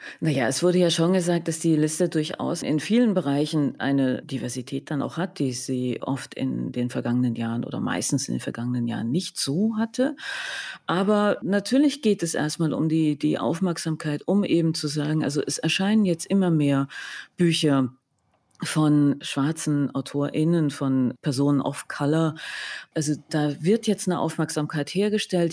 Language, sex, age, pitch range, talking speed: German, female, 40-59, 145-185 Hz, 160 wpm